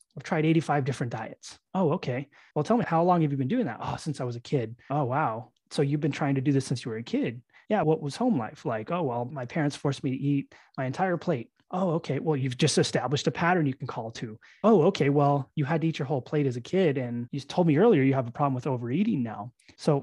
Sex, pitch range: male, 135-170 Hz